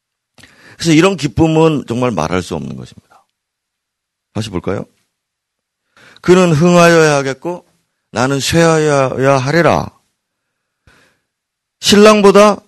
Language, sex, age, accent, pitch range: Korean, male, 40-59, native, 105-170 Hz